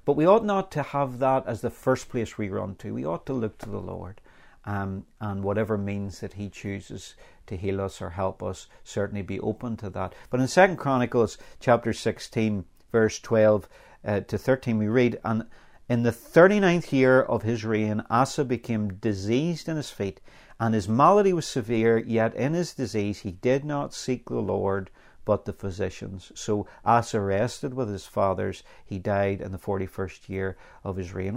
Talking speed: 190 wpm